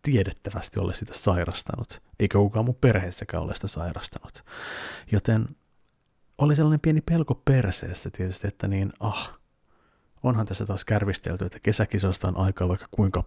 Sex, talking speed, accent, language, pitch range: male, 140 wpm, native, Finnish, 95-120 Hz